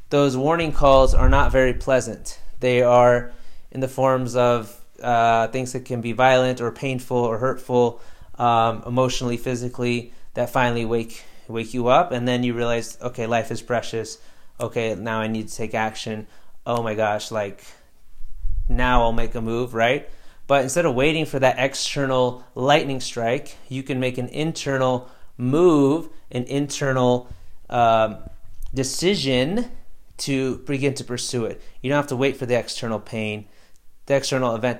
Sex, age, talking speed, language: male, 30-49, 160 wpm, English